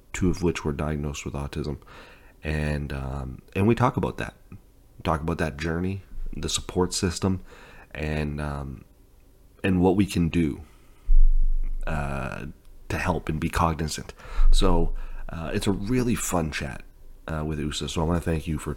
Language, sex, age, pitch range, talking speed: English, male, 30-49, 75-90 Hz, 165 wpm